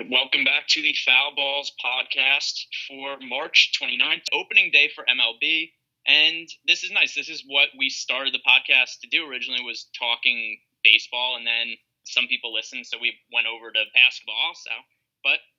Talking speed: 170 wpm